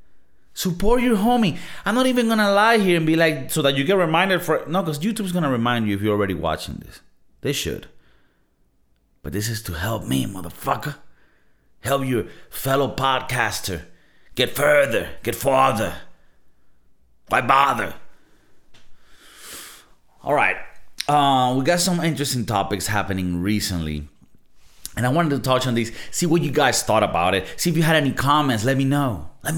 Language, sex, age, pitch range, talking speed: English, male, 30-49, 120-170 Hz, 165 wpm